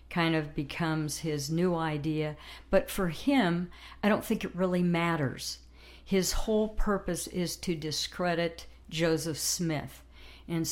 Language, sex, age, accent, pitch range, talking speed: English, female, 60-79, American, 155-195 Hz, 135 wpm